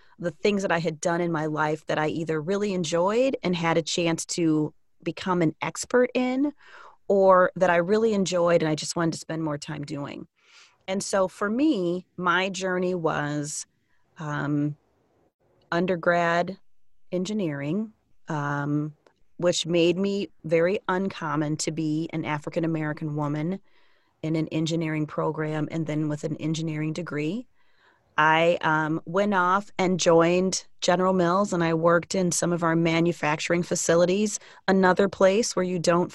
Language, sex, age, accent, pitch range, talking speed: English, female, 30-49, American, 160-190 Hz, 150 wpm